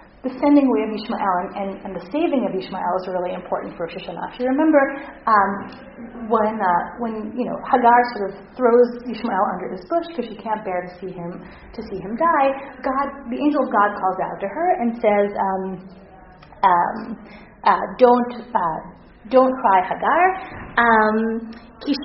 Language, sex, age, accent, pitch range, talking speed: English, female, 30-49, American, 195-295 Hz, 150 wpm